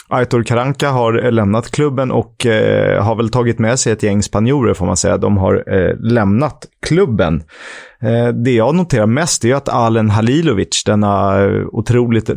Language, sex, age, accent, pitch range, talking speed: Swedish, male, 30-49, native, 105-135 Hz, 165 wpm